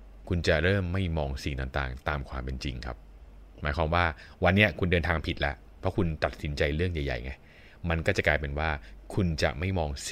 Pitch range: 75-95 Hz